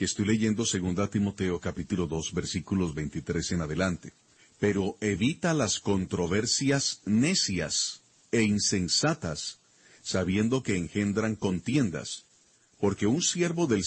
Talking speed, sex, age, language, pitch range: 115 wpm, male, 40-59, Spanish, 95-115 Hz